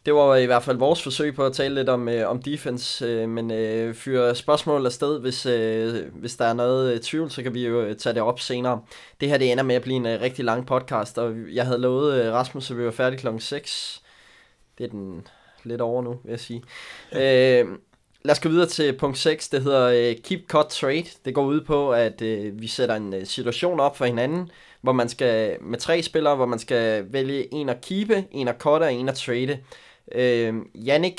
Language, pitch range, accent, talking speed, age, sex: Danish, 120-145 Hz, native, 225 wpm, 20-39, male